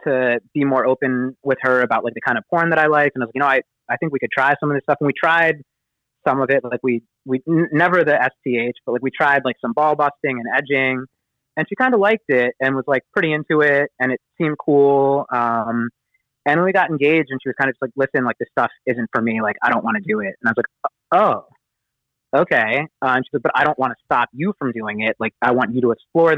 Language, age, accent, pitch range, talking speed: English, 20-39, American, 120-145 Hz, 280 wpm